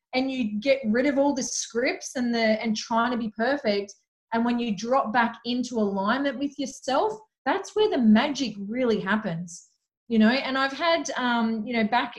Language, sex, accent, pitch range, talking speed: English, female, Australian, 200-240 Hz, 190 wpm